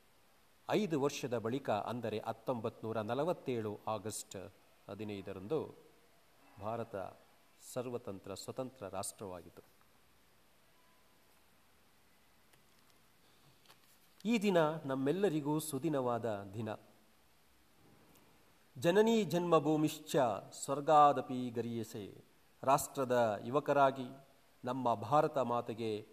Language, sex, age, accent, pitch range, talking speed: Kannada, male, 40-59, native, 110-145 Hz, 60 wpm